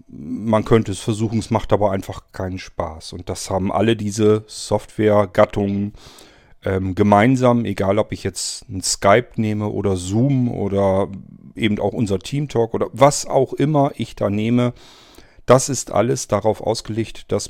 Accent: German